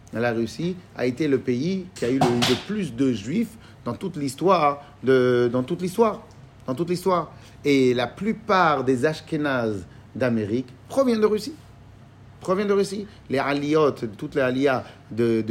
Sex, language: male, French